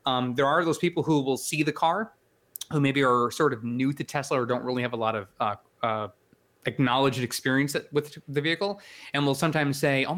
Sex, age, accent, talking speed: male, 20-39, American, 220 wpm